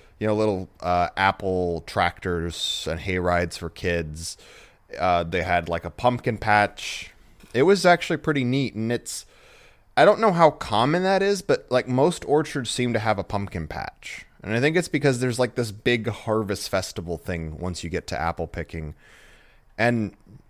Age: 30-49